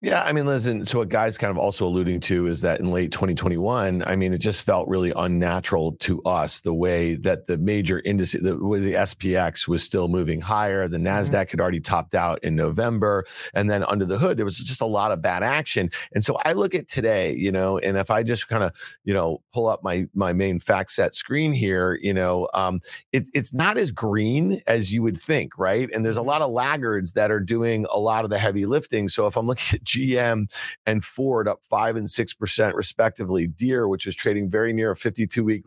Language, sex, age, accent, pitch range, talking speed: English, male, 40-59, American, 95-120 Hz, 225 wpm